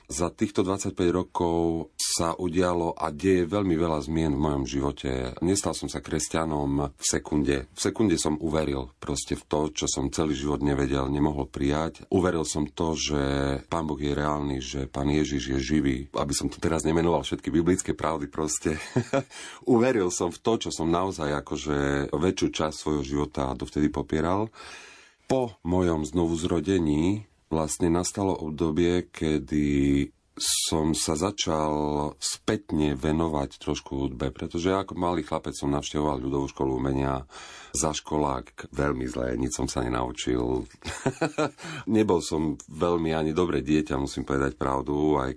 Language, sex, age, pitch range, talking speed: Slovak, male, 40-59, 70-85 Hz, 150 wpm